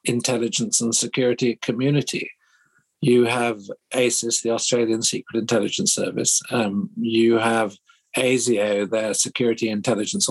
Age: 50-69